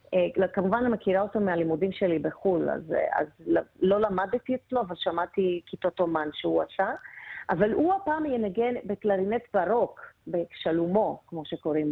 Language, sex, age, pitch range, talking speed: Hebrew, female, 30-49, 180-225 Hz, 135 wpm